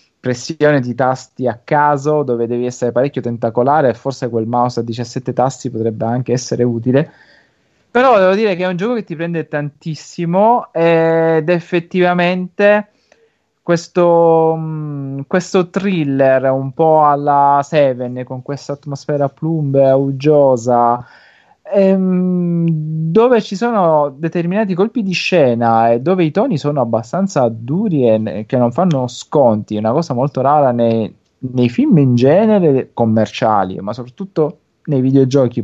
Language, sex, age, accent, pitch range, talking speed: Italian, male, 20-39, native, 120-160 Hz, 130 wpm